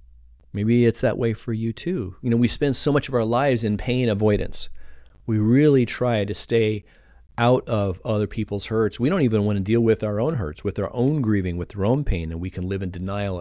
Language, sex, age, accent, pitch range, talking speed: English, male, 40-59, American, 90-115 Hz, 235 wpm